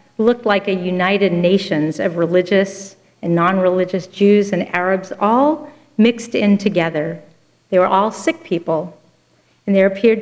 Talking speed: 140 wpm